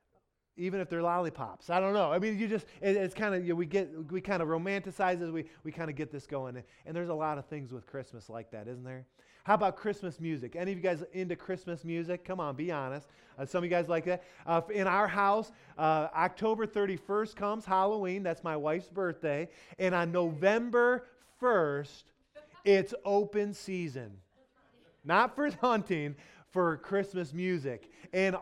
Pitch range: 145-190 Hz